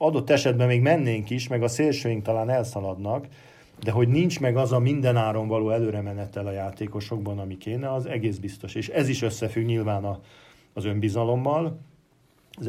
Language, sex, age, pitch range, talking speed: Hungarian, male, 40-59, 105-125 Hz, 165 wpm